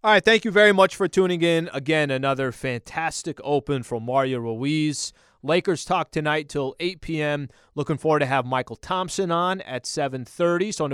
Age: 30-49